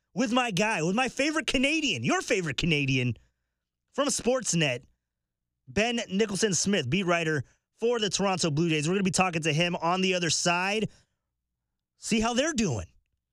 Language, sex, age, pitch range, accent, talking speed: English, male, 30-49, 150-210 Hz, American, 160 wpm